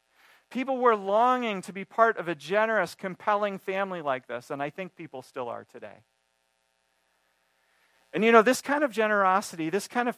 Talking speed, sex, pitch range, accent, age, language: 175 wpm, male, 120-195 Hz, American, 40-59, English